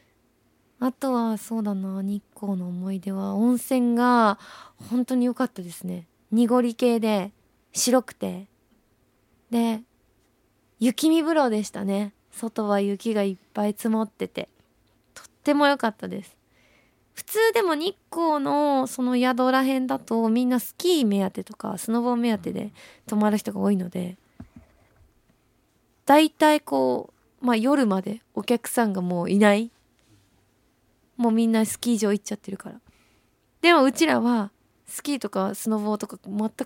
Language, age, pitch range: Japanese, 20-39, 200-255 Hz